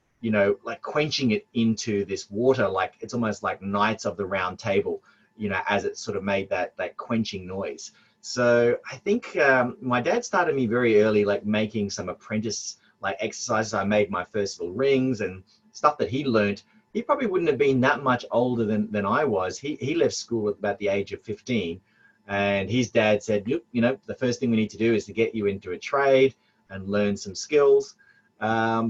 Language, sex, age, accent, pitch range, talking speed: English, male, 30-49, Australian, 105-130 Hz, 215 wpm